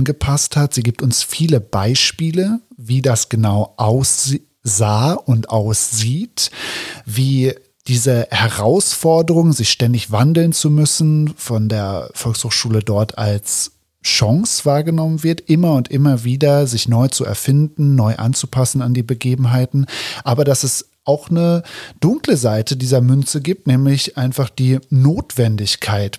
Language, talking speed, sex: German, 130 wpm, male